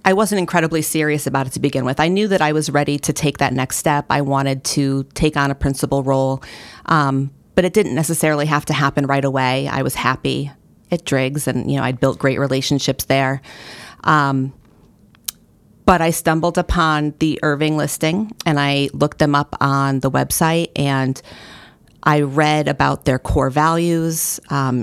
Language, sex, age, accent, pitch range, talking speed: English, female, 40-59, American, 135-155 Hz, 180 wpm